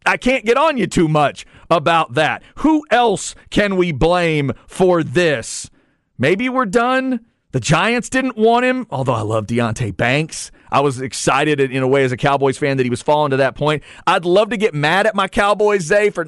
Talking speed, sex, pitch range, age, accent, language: 205 wpm, male, 145-215 Hz, 40-59, American, English